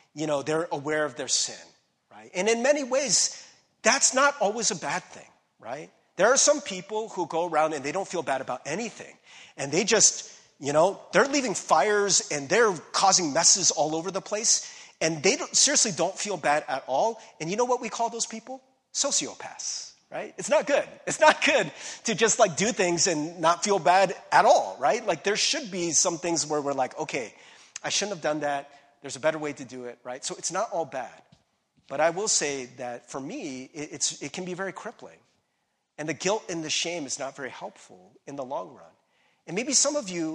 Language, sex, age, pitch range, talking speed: English, male, 30-49, 150-215 Hz, 215 wpm